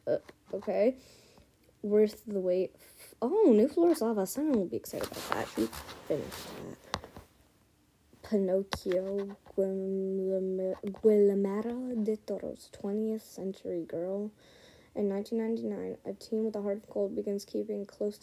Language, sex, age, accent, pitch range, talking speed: English, female, 10-29, American, 190-220 Hz, 130 wpm